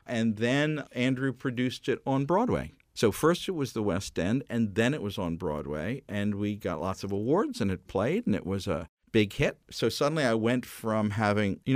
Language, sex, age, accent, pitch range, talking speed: English, male, 50-69, American, 95-125 Hz, 215 wpm